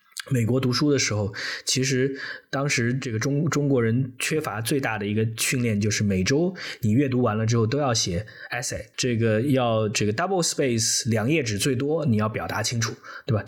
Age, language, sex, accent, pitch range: 20-39, Chinese, male, native, 105-135 Hz